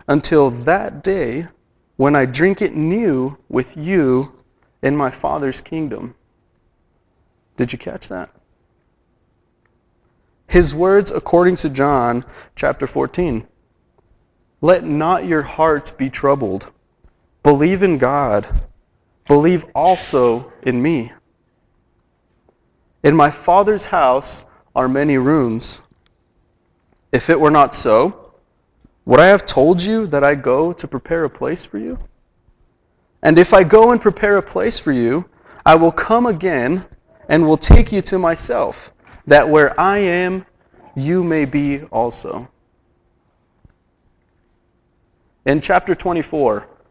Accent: American